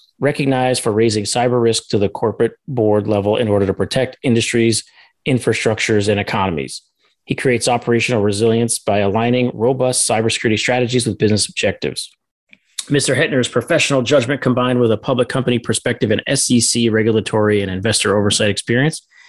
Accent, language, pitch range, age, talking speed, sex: American, English, 105-125 Hz, 30-49, 145 wpm, male